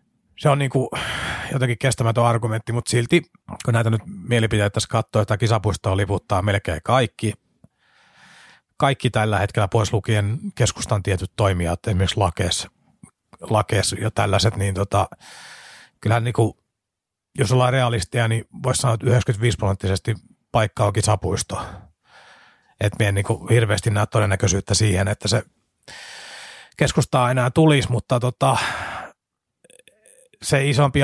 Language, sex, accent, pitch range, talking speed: Finnish, male, native, 105-130 Hz, 120 wpm